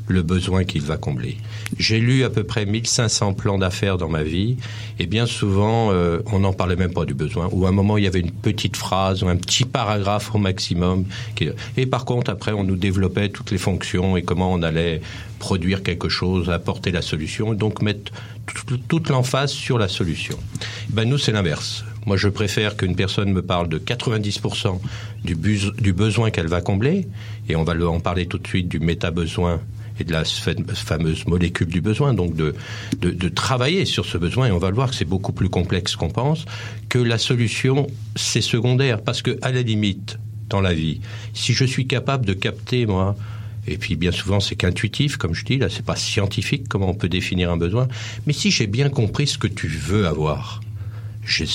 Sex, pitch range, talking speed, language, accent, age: male, 95-115 Hz, 205 wpm, French, French, 50-69